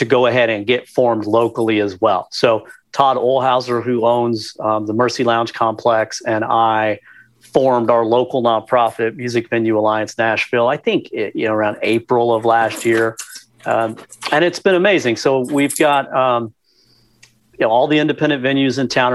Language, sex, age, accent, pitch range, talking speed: English, male, 40-59, American, 115-130 Hz, 175 wpm